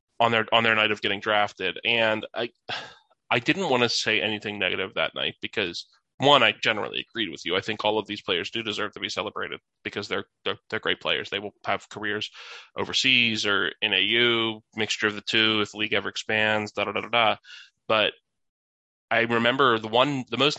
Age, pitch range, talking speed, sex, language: 20-39, 105-120 Hz, 210 wpm, male, English